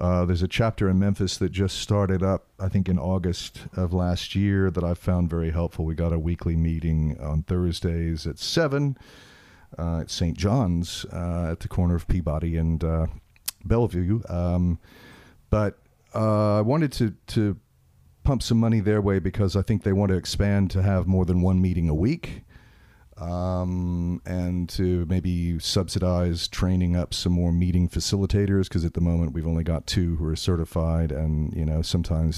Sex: male